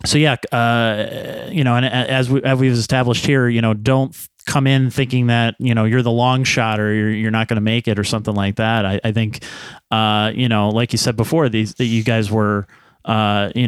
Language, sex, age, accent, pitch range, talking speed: English, male, 30-49, American, 105-120 Hz, 240 wpm